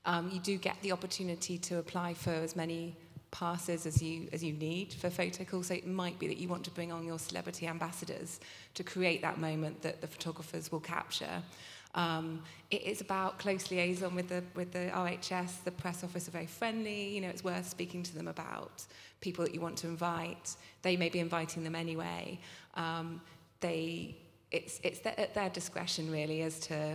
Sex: female